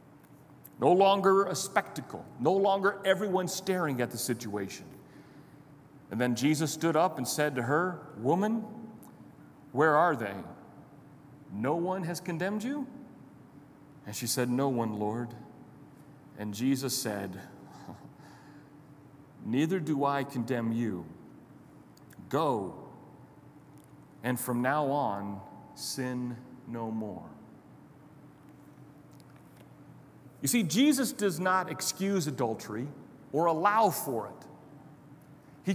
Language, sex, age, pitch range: English, male, 40-59, 135-180 Hz